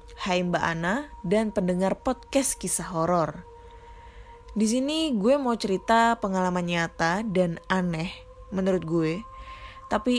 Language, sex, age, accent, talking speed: Indonesian, female, 20-39, native, 120 wpm